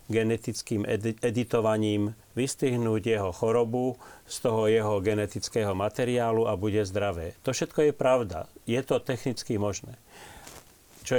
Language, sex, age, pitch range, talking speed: Slovak, male, 40-59, 105-125 Hz, 120 wpm